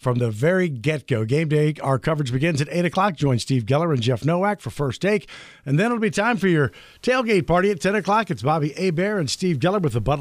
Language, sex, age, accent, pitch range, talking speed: English, male, 50-69, American, 140-195 Hz, 255 wpm